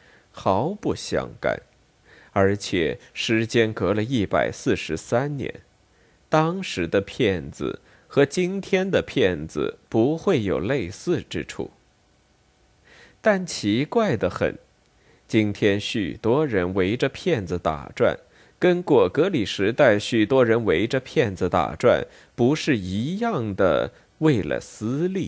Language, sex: Chinese, male